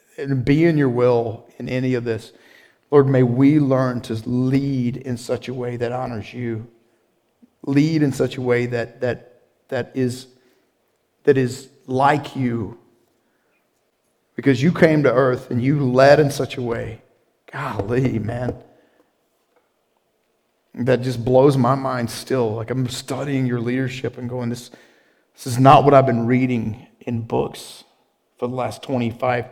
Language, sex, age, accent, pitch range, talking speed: English, male, 40-59, American, 120-135 Hz, 155 wpm